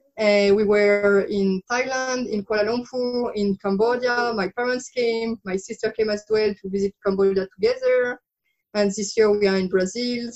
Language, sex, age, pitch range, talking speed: English, female, 20-39, 205-250 Hz, 170 wpm